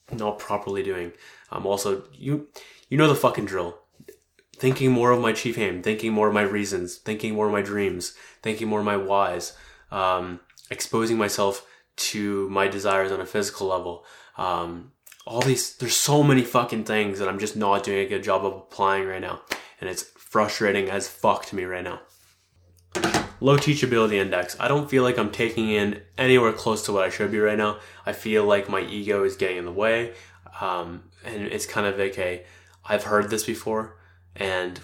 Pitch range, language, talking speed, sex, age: 95-110 Hz, English, 195 wpm, male, 20-39